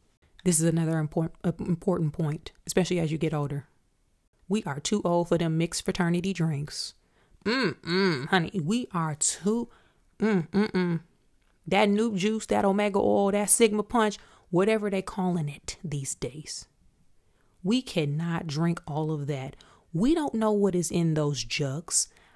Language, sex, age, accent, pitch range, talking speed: English, female, 30-49, American, 165-235 Hz, 150 wpm